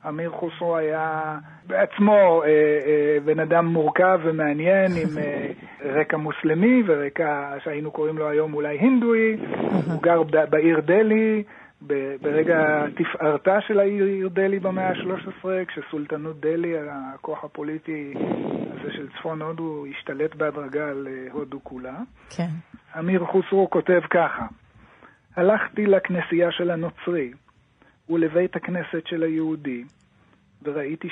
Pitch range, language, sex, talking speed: 150-185 Hz, Hebrew, male, 105 wpm